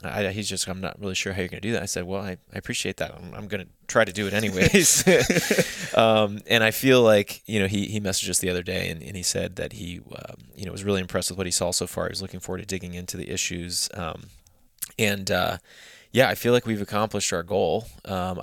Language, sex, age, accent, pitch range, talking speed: English, male, 20-39, American, 90-105 Hz, 265 wpm